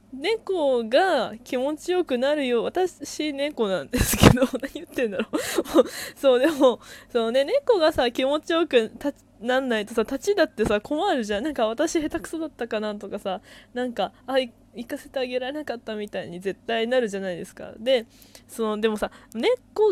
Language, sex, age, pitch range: Japanese, female, 20-39, 200-285 Hz